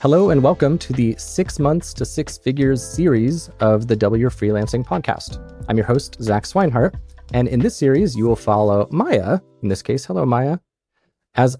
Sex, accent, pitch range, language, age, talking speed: male, American, 100-135 Hz, English, 30-49, 180 wpm